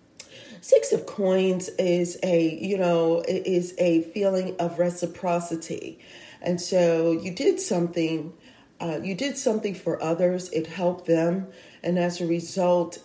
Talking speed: 140 wpm